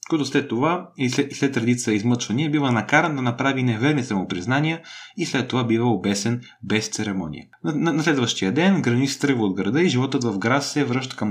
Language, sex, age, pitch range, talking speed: Bulgarian, male, 30-49, 115-155 Hz, 200 wpm